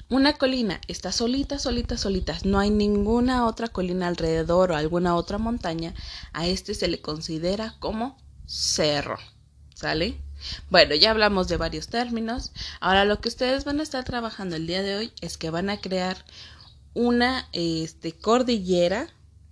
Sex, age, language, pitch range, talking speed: female, 20-39, Spanish, 165-225 Hz, 150 wpm